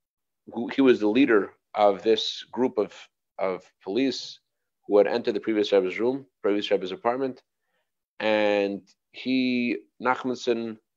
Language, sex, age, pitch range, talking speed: English, male, 40-59, 105-140 Hz, 125 wpm